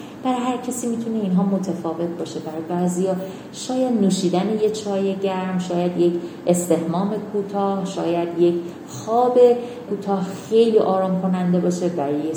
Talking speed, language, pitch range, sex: 140 wpm, Persian, 165-220 Hz, female